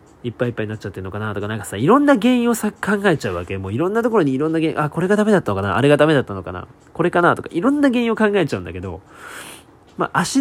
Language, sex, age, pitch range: Japanese, male, 20-39, 105-155 Hz